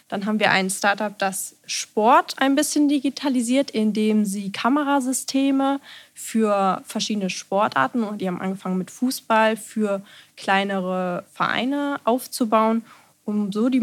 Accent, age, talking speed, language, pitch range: German, 20-39, 125 wpm, German, 200-255 Hz